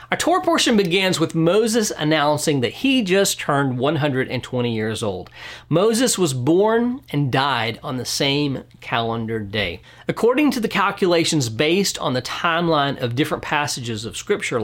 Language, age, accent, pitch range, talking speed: English, 40-59, American, 120-175 Hz, 150 wpm